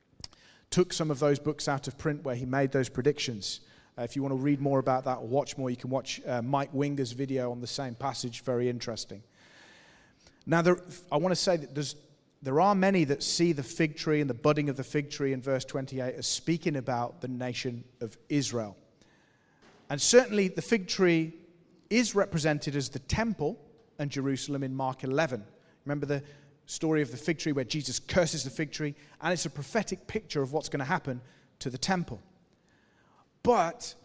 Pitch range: 135-170 Hz